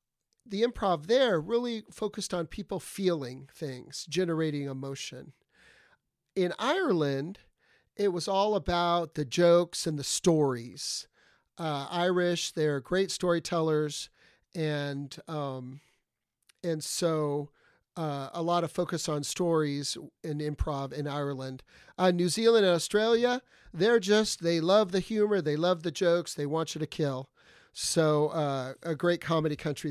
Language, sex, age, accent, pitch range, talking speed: English, male, 40-59, American, 150-190 Hz, 135 wpm